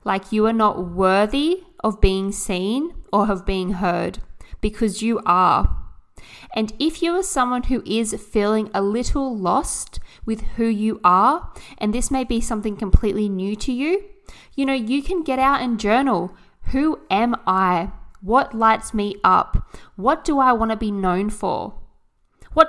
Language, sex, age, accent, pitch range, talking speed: English, female, 20-39, Australian, 200-260 Hz, 165 wpm